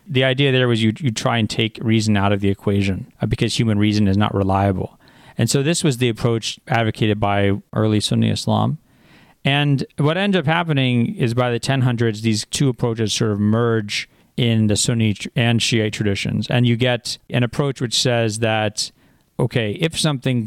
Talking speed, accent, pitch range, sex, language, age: 190 wpm, American, 105-130 Hz, male, English, 40-59